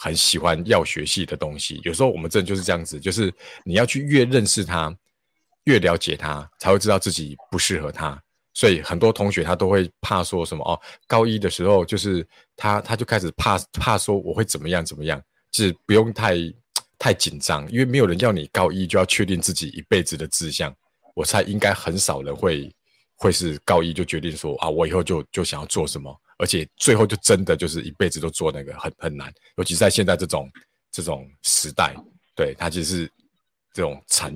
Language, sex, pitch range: Chinese, male, 80-105 Hz